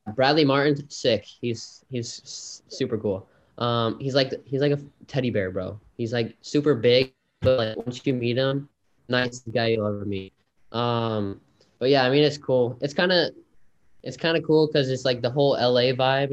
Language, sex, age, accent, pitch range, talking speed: English, male, 10-29, American, 110-125 Hz, 190 wpm